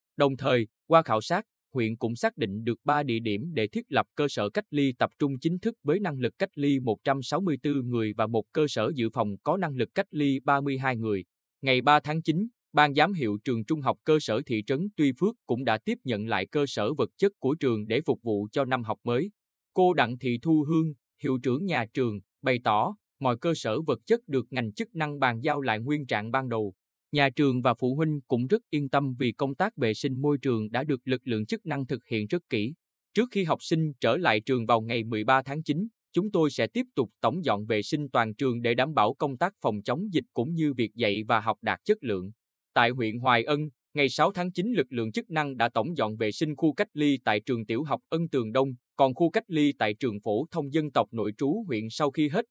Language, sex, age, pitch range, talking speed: Vietnamese, male, 20-39, 115-155 Hz, 245 wpm